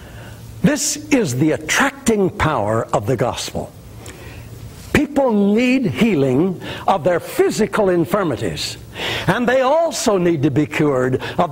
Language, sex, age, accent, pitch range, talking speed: English, male, 60-79, American, 155-235 Hz, 120 wpm